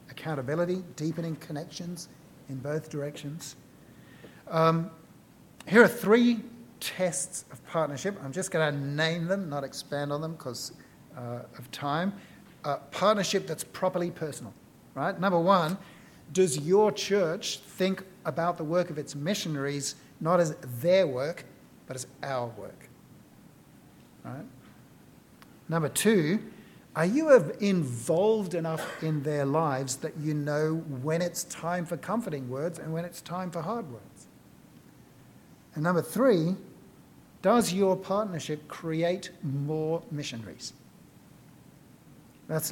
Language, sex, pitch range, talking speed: English, male, 145-185 Hz, 125 wpm